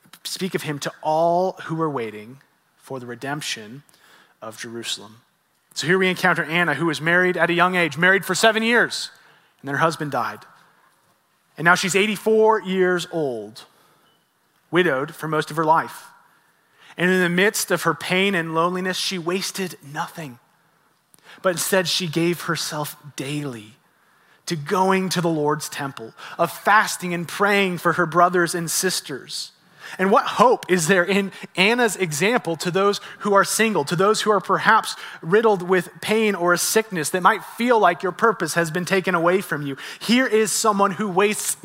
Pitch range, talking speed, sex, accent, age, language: 165-205 Hz, 175 wpm, male, American, 30-49, English